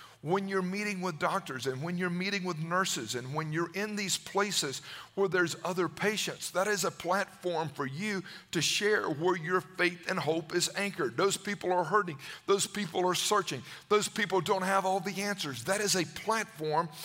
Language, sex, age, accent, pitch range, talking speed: English, male, 50-69, American, 160-195 Hz, 195 wpm